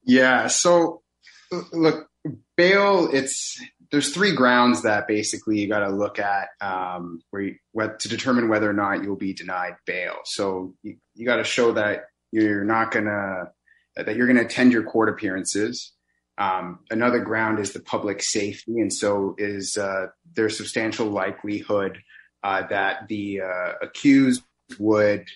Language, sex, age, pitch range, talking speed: English, male, 30-49, 95-125 Hz, 155 wpm